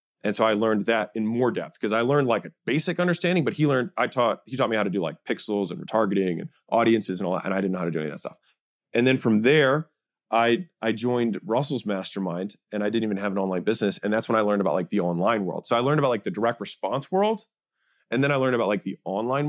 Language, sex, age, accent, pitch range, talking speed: English, male, 30-49, American, 105-145 Hz, 275 wpm